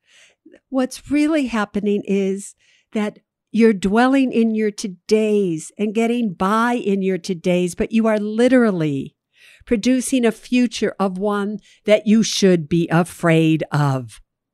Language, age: English, 60-79